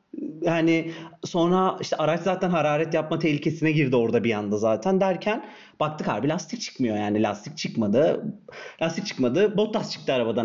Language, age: Turkish, 40-59